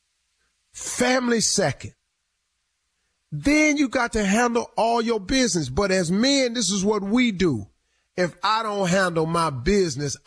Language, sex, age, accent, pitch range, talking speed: English, male, 40-59, American, 135-200 Hz, 140 wpm